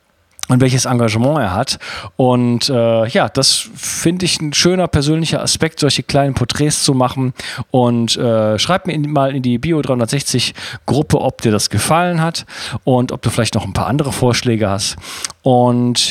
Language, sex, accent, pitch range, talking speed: German, male, German, 110-140 Hz, 170 wpm